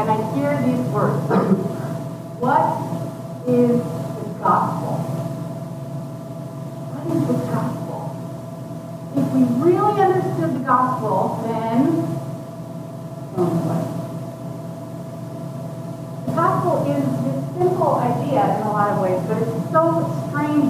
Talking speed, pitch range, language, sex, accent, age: 85 wpm, 140-200 Hz, English, female, American, 40-59